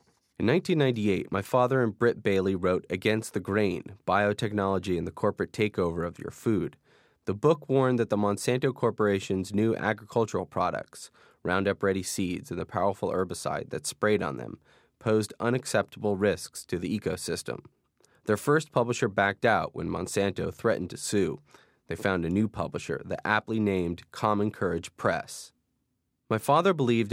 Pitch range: 95-120 Hz